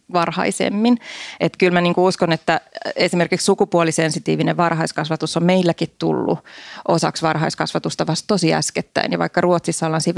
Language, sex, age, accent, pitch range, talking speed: Finnish, female, 30-49, native, 155-185 Hz, 135 wpm